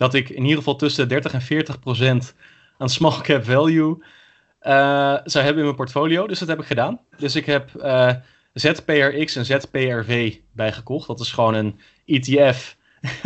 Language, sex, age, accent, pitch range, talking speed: Dutch, male, 20-39, Dutch, 125-150 Hz, 170 wpm